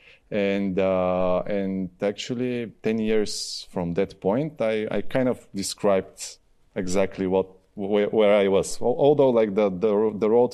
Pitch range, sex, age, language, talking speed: 90-105 Hz, male, 20-39, English, 150 wpm